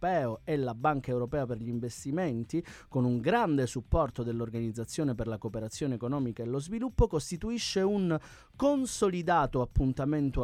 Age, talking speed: 30-49, 130 wpm